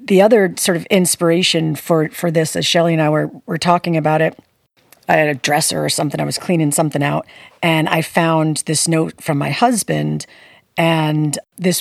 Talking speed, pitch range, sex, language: 195 wpm, 160-185 Hz, female, English